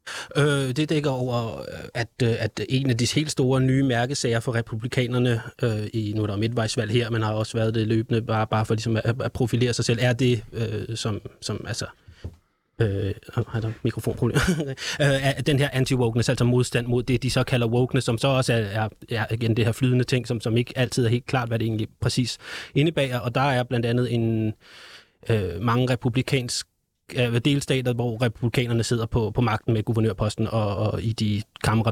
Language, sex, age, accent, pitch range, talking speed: Danish, male, 20-39, native, 115-130 Hz, 195 wpm